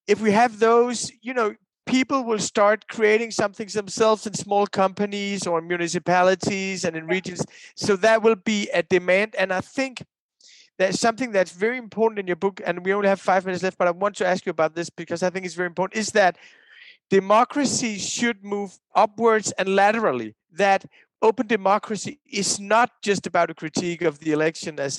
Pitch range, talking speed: 170-220 Hz, 190 wpm